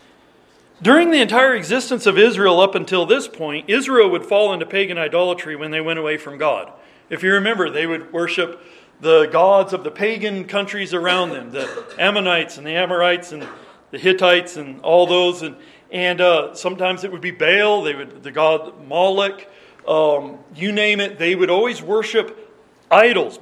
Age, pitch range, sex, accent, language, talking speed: 40-59, 175-235 Hz, male, American, English, 175 wpm